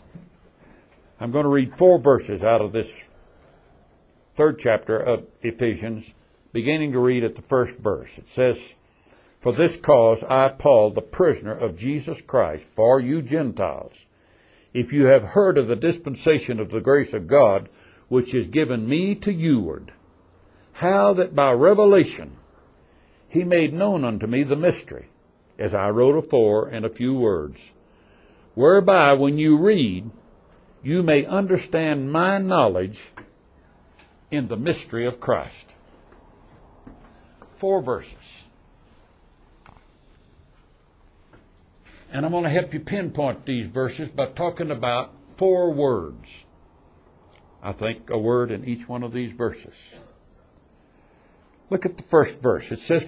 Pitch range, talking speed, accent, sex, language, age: 110-165 Hz, 135 wpm, American, male, English, 60-79